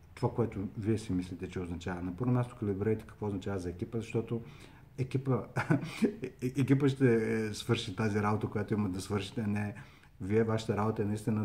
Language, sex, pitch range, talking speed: Bulgarian, male, 100-125 Hz, 185 wpm